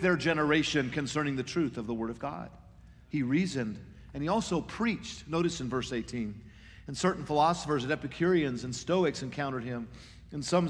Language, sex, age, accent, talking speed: English, male, 50-69, American, 175 wpm